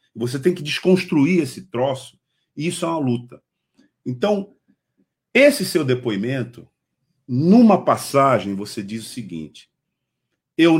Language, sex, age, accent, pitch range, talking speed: Portuguese, male, 50-69, Brazilian, 115-170 Hz, 120 wpm